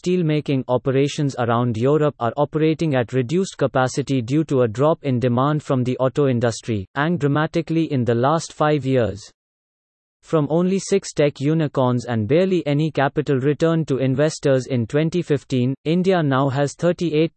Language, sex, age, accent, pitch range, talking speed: English, male, 30-49, Indian, 130-155 Hz, 150 wpm